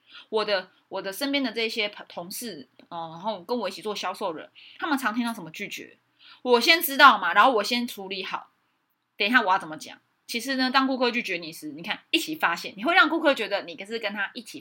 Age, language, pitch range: 20-39, Chinese, 205-275 Hz